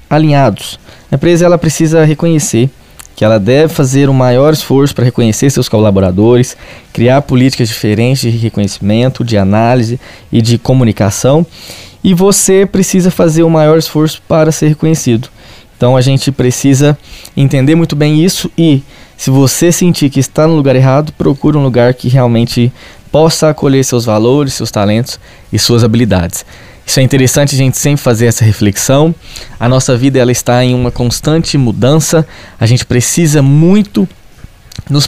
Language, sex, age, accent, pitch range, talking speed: Portuguese, male, 10-29, Brazilian, 115-150 Hz, 155 wpm